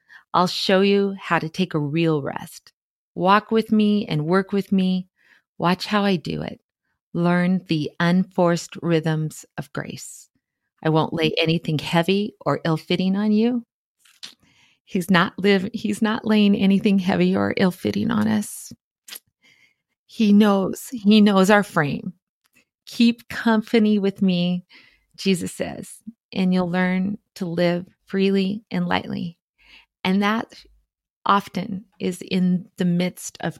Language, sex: English, female